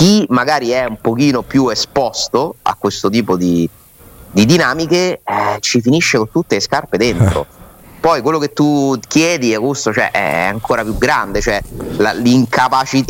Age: 30-49